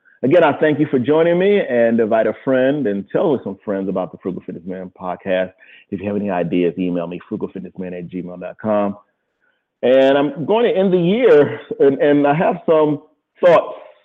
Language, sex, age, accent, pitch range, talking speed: English, male, 40-59, American, 95-115 Hz, 190 wpm